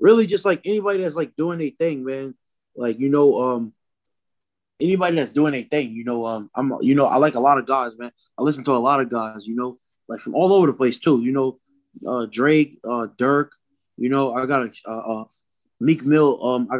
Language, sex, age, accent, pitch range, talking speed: English, male, 20-39, American, 115-140 Hz, 230 wpm